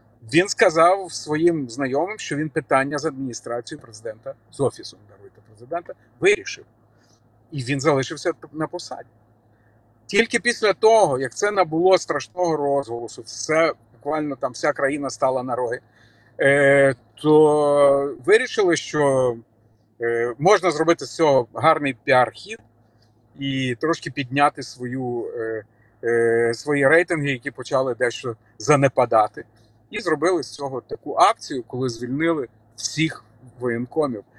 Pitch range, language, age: 115-160 Hz, Ukrainian, 50-69